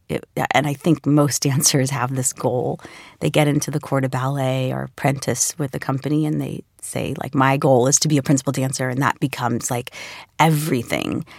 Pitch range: 130-150 Hz